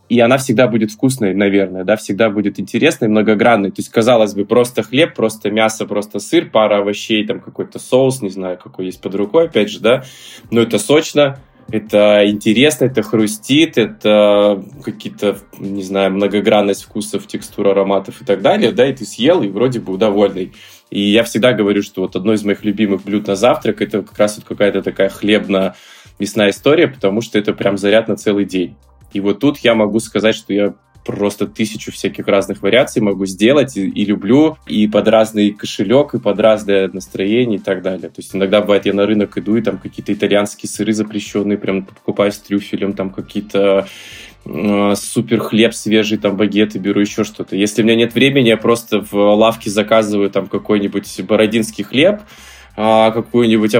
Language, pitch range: Russian, 100-115 Hz